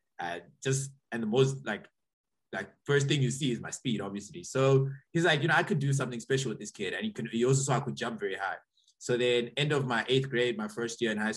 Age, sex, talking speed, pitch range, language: 20-39, male, 270 wpm, 110-135 Hz, English